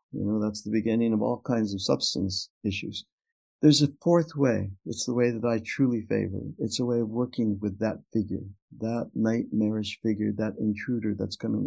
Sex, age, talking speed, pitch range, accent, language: male, 60-79, 190 wpm, 105-130 Hz, American, English